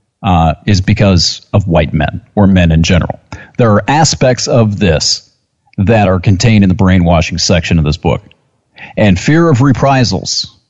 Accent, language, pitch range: American, English, 100-135 Hz